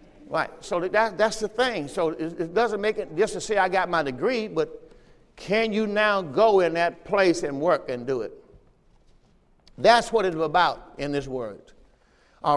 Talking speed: 190 wpm